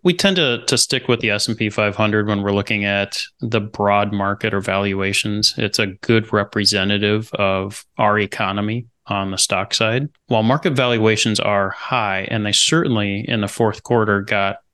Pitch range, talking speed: 100-115 Hz, 170 wpm